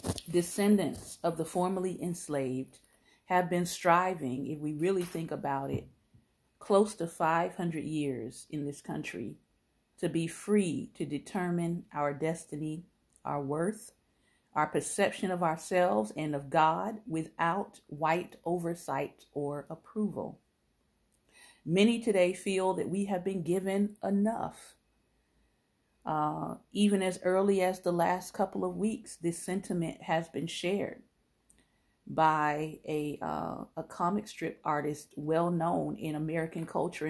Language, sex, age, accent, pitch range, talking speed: English, female, 40-59, American, 155-190 Hz, 125 wpm